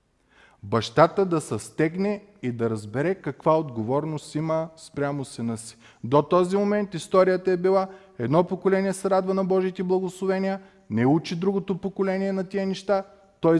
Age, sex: 30-49, male